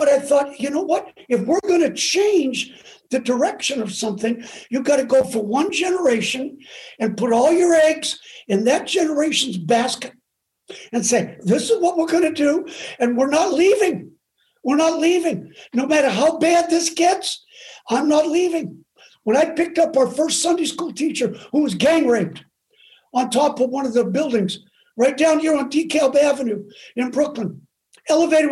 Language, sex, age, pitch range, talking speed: English, male, 60-79, 250-325 Hz, 180 wpm